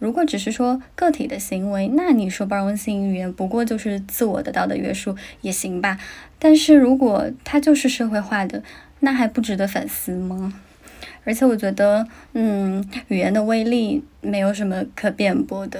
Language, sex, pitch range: Chinese, female, 205-270 Hz